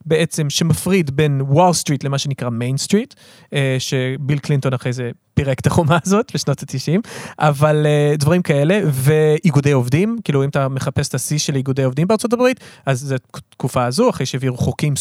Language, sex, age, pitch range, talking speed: Hebrew, male, 30-49, 135-170 Hz, 165 wpm